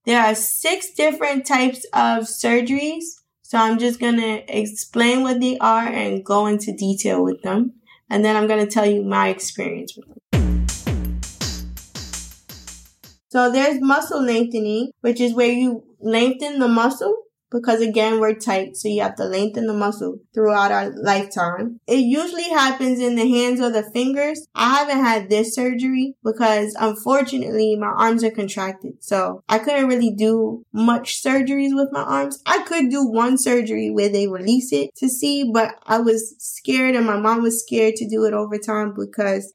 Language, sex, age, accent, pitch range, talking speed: English, female, 10-29, American, 215-265 Hz, 170 wpm